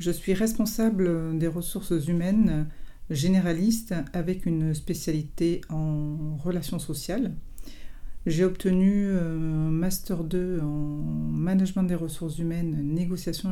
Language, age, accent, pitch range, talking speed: French, 50-69, French, 150-175 Hz, 105 wpm